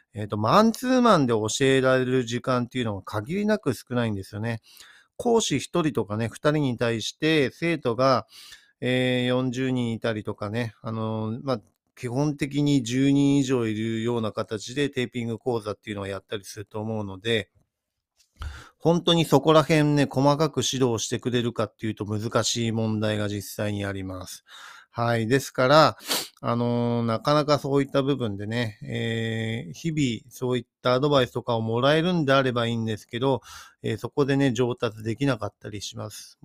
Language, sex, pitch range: Japanese, male, 110-135 Hz